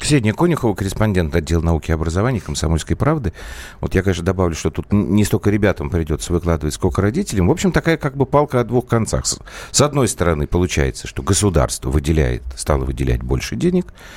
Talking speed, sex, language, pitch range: 180 wpm, male, Russian, 85-115 Hz